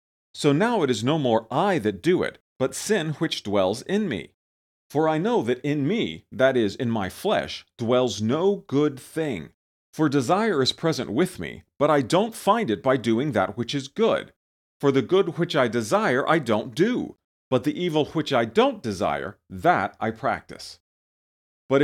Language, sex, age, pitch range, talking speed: English, male, 40-59, 115-160 Hz, 185 wpm